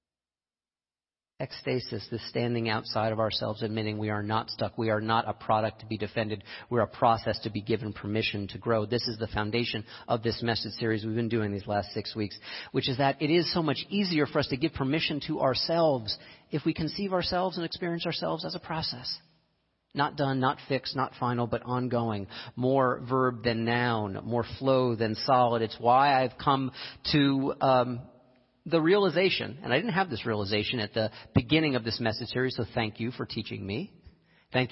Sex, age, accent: male, 40-59, American